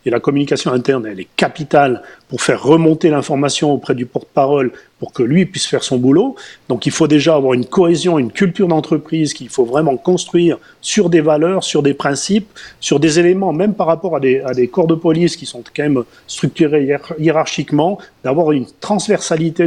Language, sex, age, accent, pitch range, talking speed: French, male, 40-59, French, 145-190 Hz, 190 wpm